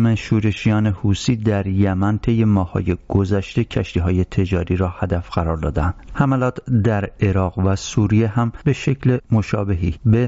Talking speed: 135 wpm